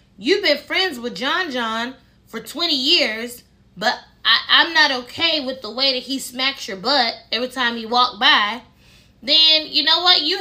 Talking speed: 180 wpm